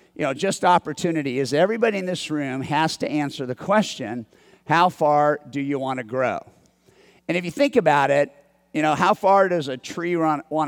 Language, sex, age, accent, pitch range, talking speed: English, male, 50-69, American, 140-175 Hz, 195 wpm